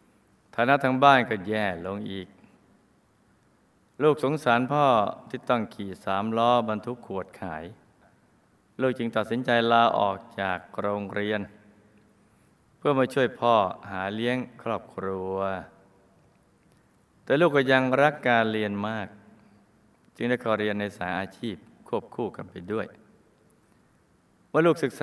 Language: Thai